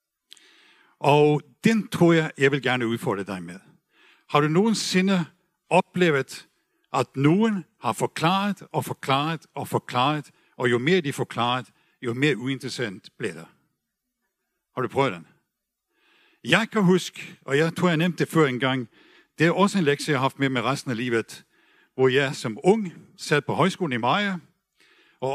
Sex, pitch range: male, 135-180 Hz